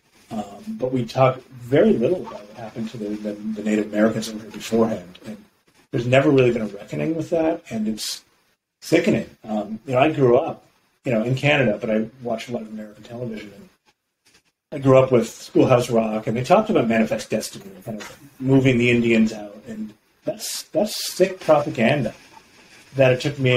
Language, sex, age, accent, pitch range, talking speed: English, male, 40-59, American, 110-135 Hz, 195 wpm